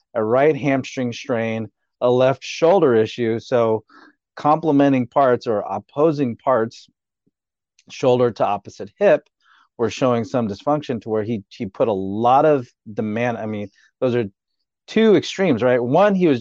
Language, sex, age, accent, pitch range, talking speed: English, male, 40-59, American, 105-130 Hz, 150 wpm